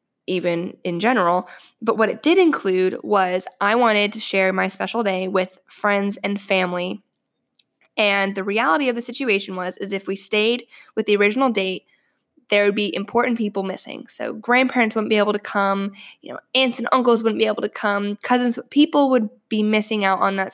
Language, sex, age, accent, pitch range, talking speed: English, female, 10-29, American, 200-240 Hz, 195 wpm